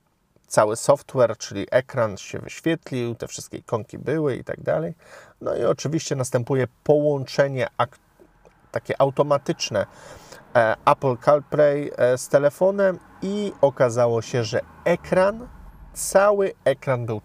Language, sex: Polish, male